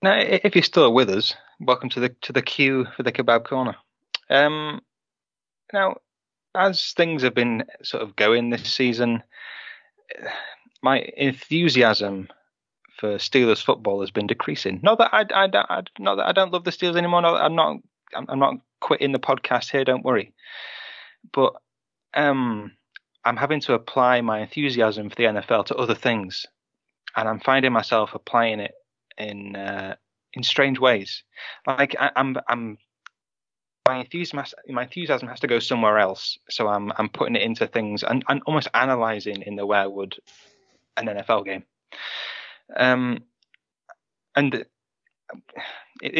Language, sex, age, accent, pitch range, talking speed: English, male, 20-39, British, 110-150 Hz, 155 wpm